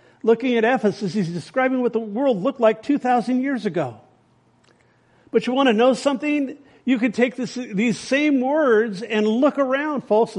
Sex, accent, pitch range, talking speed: male, American, 205-250 Hz, 175 wpm